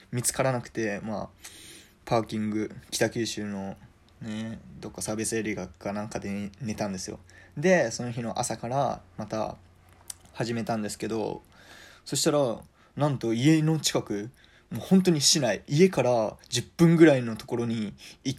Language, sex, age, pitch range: Japanese, male, 20-39, 105-145 Hz